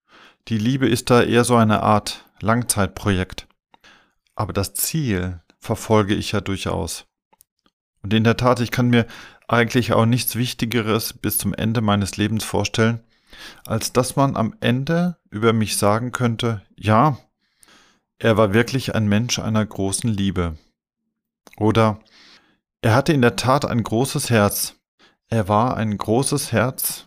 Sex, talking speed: male, 145 wpm